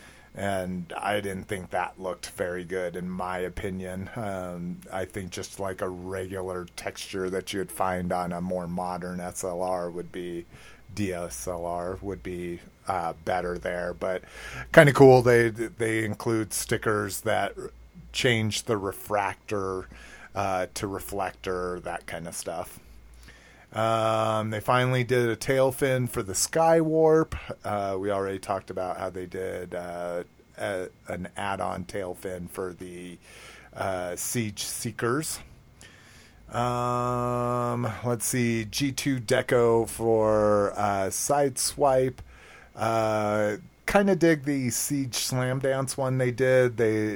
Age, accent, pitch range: 30-49, American, 90-120 Hz